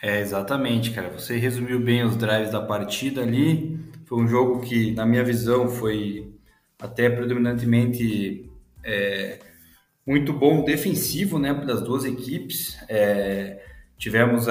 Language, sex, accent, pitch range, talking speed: Portuguese, male, Brazilian, 110-130 Hz, 130 wpm